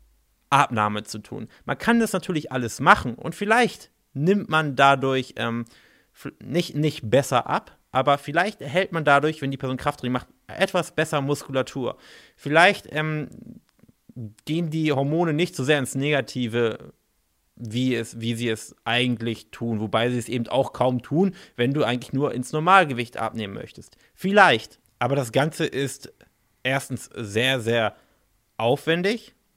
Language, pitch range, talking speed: German, 120-155 Hz, 145 wpm